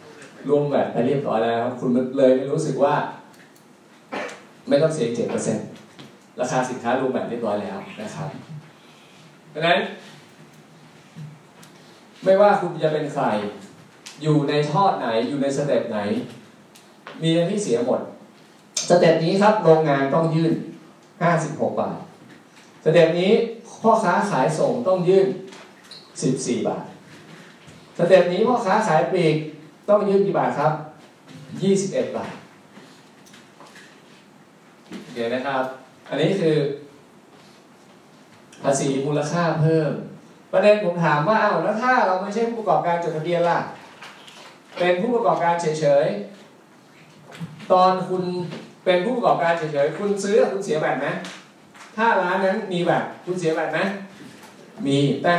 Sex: male